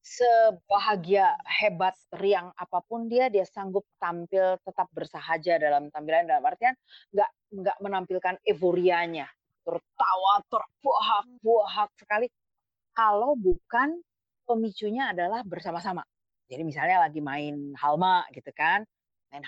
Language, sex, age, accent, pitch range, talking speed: Indonesian, female, 30-49, native, 170-225 Hz, 105 wpm